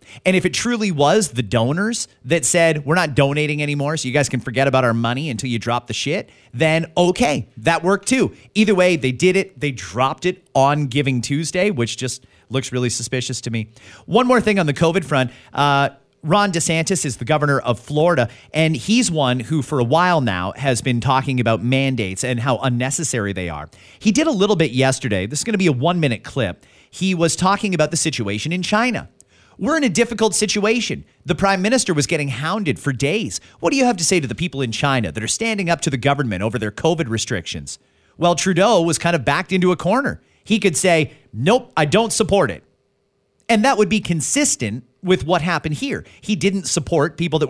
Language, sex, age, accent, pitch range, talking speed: English, male, 40-59, American, 130-190 Hz, 215 wpm